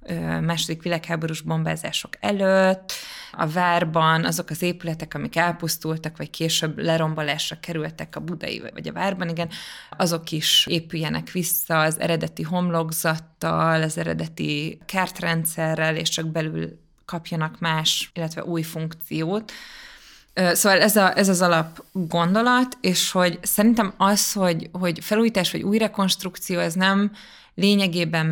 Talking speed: 125 wpm